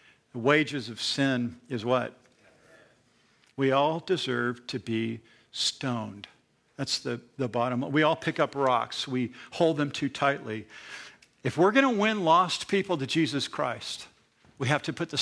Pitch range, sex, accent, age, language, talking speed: 130-175 Hz, male, American, 50-69, English, 160 wpm